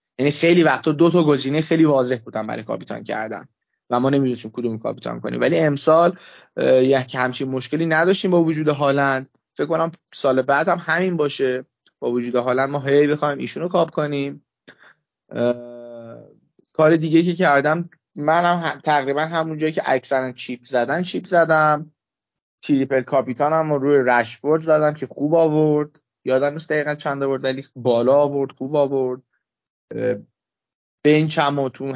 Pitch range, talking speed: 130-160 Hz, 155 wpm